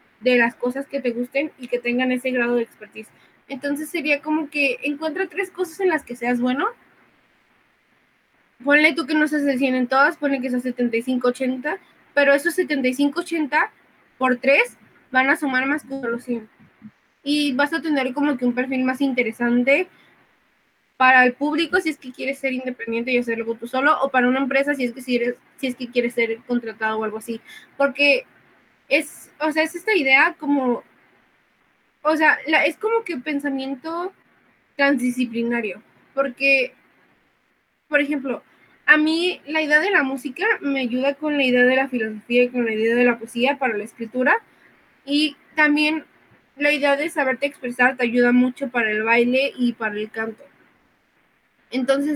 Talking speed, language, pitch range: 175 wpm, Spanish, 245-295 Hz